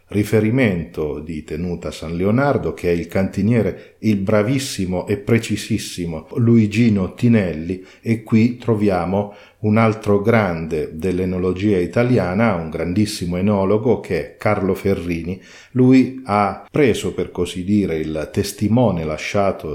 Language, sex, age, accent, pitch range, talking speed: Italian, male, 50-69, native, 90-115 Hz, 120 wpm